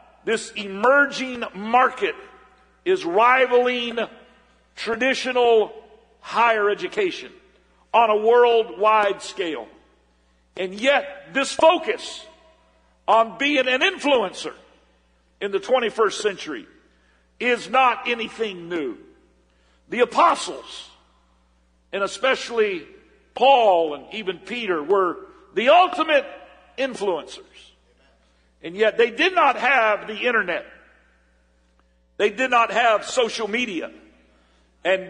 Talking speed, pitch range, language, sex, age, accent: 95 wpm, 190-280 Hz, English, male, 50-69, American